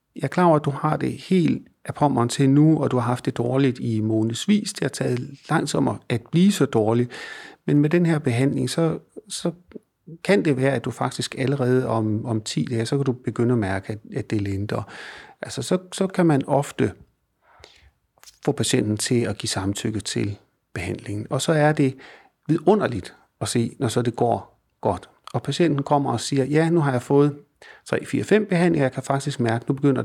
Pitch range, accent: 120-150 Hz, native